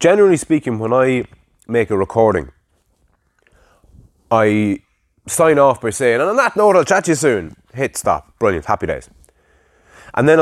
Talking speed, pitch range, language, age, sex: 160 wpm, 100-135 Hz, English, 20-39, male